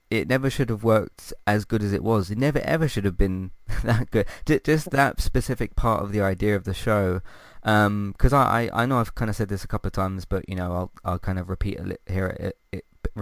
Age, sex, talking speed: 20-39, male, 250 wpm